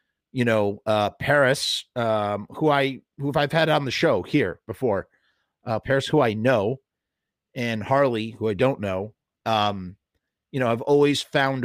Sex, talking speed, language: male, 165 wpm, English